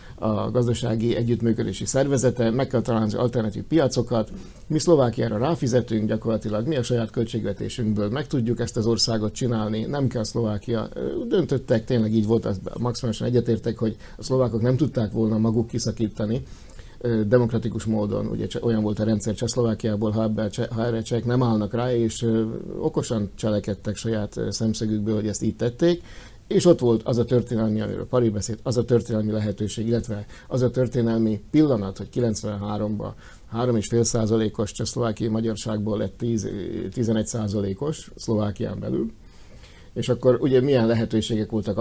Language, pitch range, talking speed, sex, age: Hungarian, 110-120 Hz, 145 wpm, male, 60-79